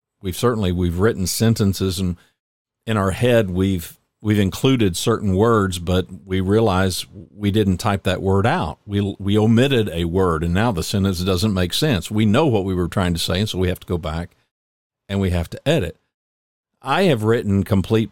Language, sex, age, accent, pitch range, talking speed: English, male, 50-69, American, 90-110 Hz, 195 wpm